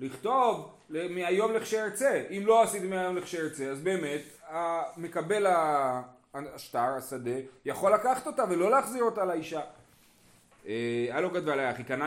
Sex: male